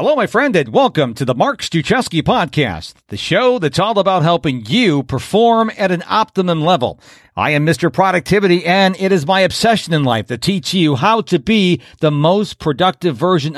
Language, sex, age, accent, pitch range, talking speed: English, male, 50-69, American, 155-220 Hz, 190 wpm